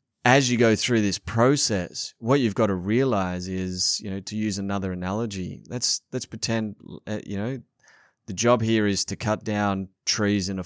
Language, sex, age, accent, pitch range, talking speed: English, male, 30-49, Australian, 100-125 Hz, 185 wpm